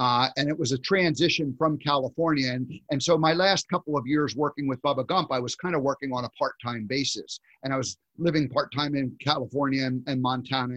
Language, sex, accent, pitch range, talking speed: English, male, American, 135-160 Hz, 215 wpm